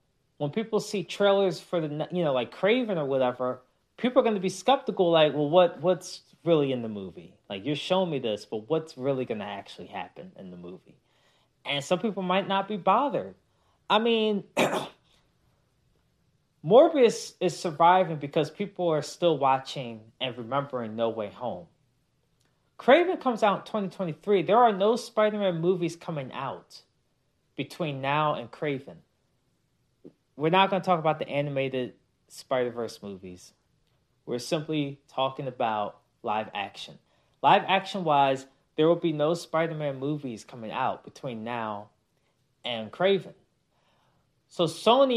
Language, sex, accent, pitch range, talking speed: English, male, American, 135-195 Hz, 145 wpm